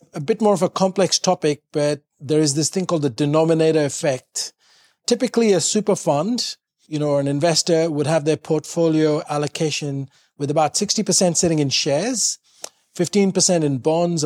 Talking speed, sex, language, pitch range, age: 165 wpm, male, English, 145-180 Hz, 30-49